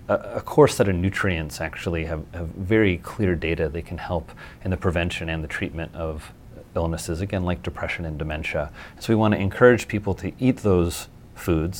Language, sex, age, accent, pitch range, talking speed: English, male, 30-49, American, 80-105 Hz, 185 wpm